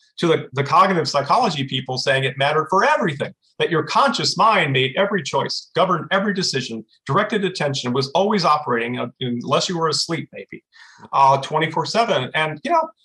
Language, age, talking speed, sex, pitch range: English, 40-59, 170 wpm, male, 135-195 Hz